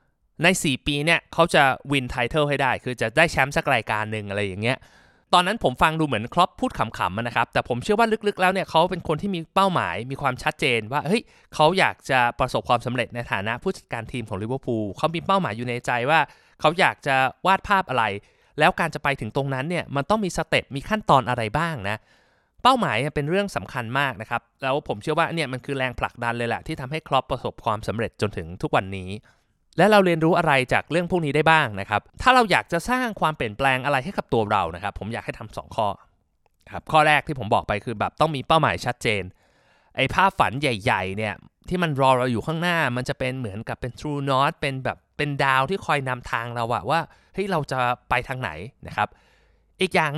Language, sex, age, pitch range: Thai, male, 20-39, 120-165 Hz